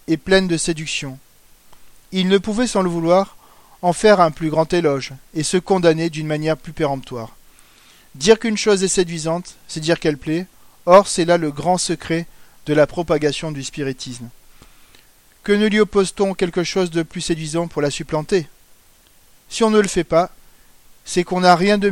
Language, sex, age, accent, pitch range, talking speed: French, male, 40-59, French, 160-195 Hz, 180 wpm